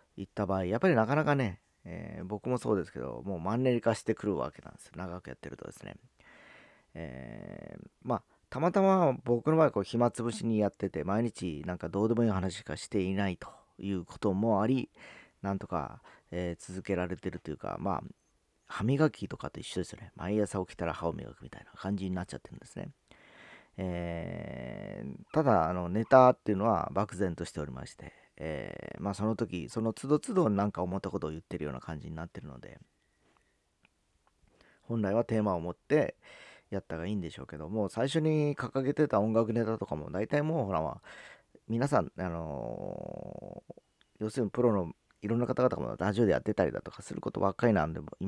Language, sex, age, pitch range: Japanese, male, 40-59, 90-120 Hz